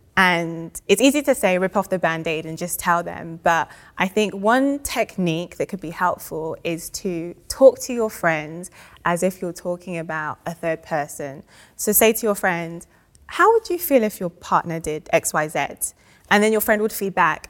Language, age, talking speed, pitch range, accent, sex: English, 20-39, 200 wpm, 160-195 Hz, British, female